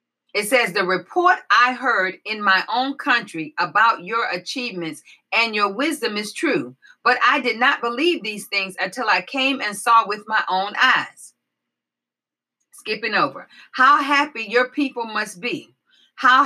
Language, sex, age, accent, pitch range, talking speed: English, female, 40-59, American, 205-295 Hz, 155 wpm